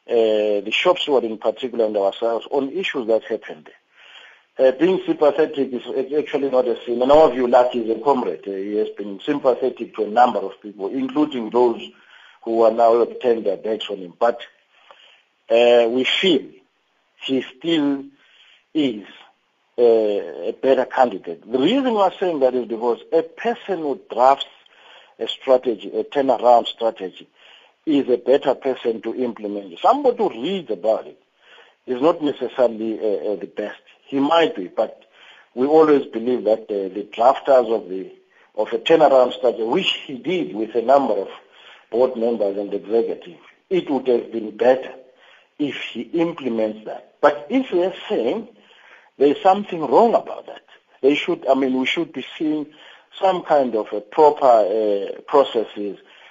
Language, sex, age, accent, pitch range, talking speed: English, male, 50-69, South African, 115-155 Hz, 165 wpm